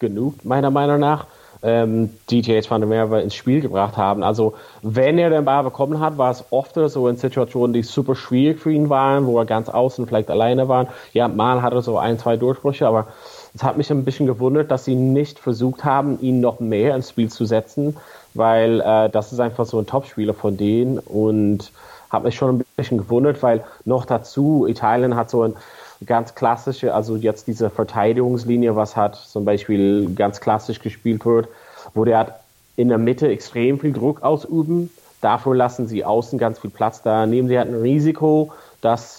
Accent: German